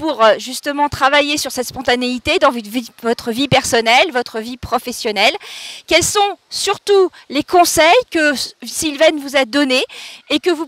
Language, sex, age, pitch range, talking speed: English, female, 40-59, 255-315 Hz, 145 wpm